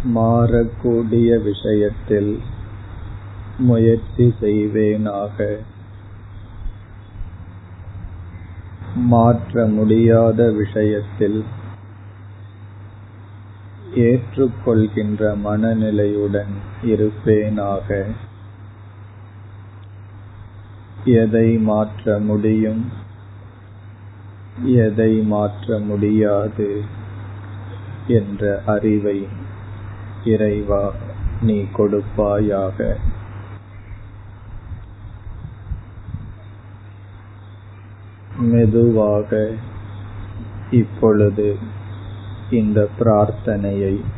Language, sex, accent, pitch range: Tamil, male, native, 100-105 Hz